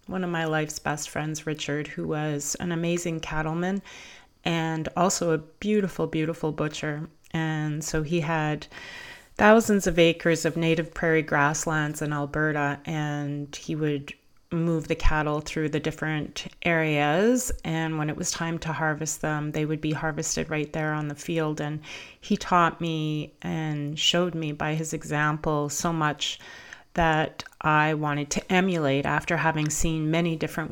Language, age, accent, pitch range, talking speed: English, 30-49, American, 150-165 Hz, 155 wpm